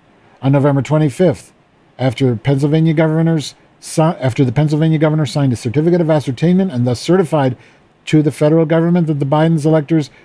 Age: 50-69